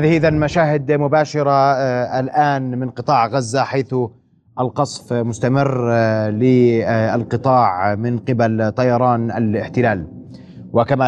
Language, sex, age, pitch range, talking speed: Arabic, male, 30-49, 115-145 Hz, 90 wpm